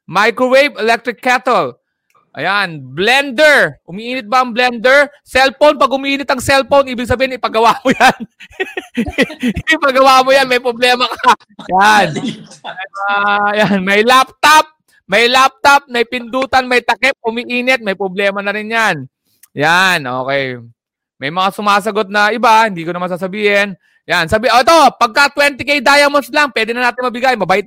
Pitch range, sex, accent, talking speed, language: 200-270 Hz, male, native, 140 wpm, Filipino